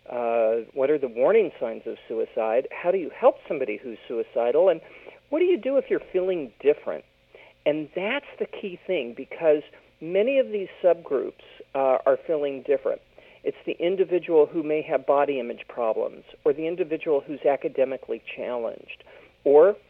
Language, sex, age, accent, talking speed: English, male, 50-69, American, 165 wpm